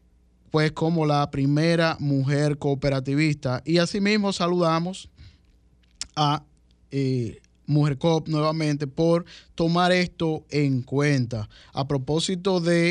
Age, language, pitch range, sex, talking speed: 10-29, Spanish, 135-165 Hz, male, 100 wpm